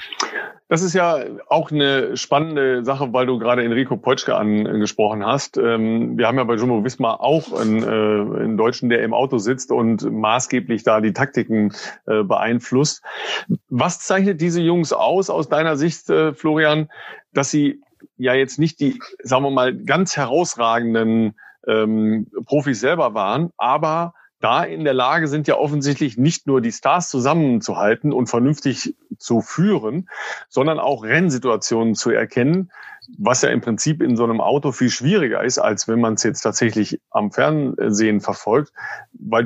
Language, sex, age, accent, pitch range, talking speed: German, male, 40-59, German, 115-150 Hz, 150 wpm